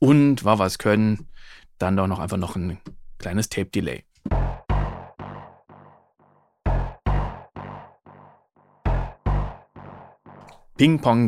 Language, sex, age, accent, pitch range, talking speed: German, male, 40-59, German, 110-145 Hz, 65 wpm